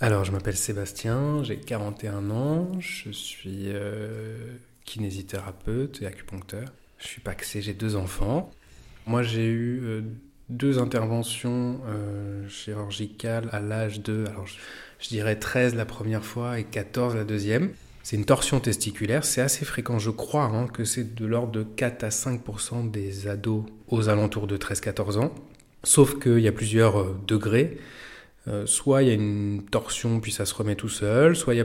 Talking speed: 170 wpm